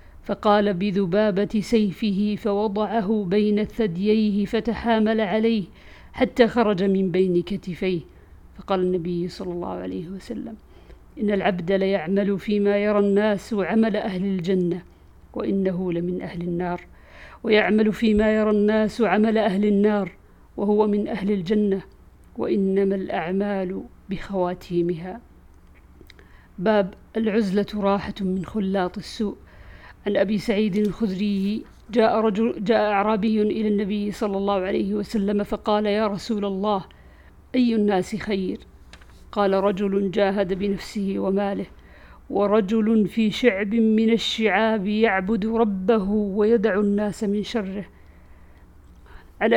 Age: 50-69